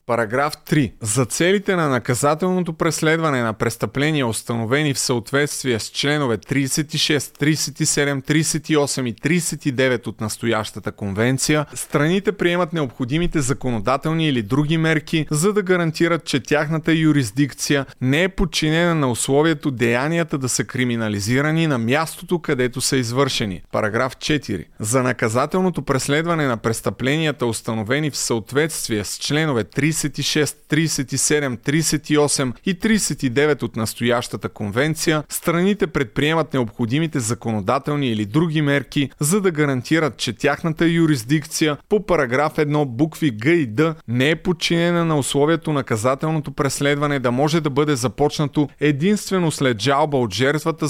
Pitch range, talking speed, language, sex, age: 125-160 Hz, 125 wpm, Bulgarian, male, 30-49